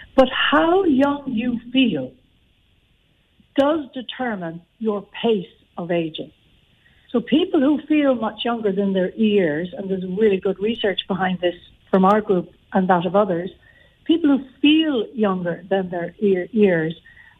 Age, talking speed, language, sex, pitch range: 60-79, 140 wpm, English, female, 185-250 Hz